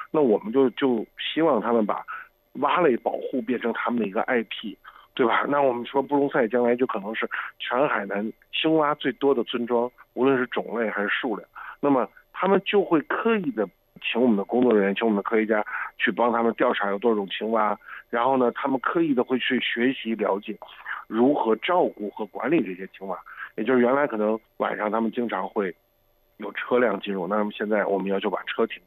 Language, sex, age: Chinese, male, 50-69